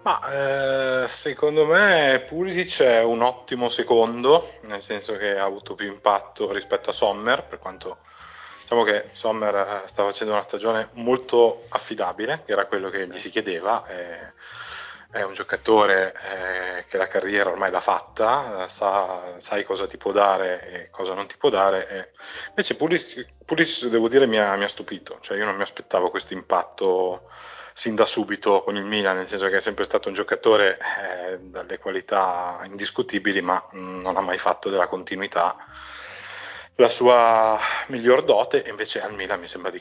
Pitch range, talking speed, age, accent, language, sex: 95-135 Hz, 170 wpm, 20-39, native, Italian, male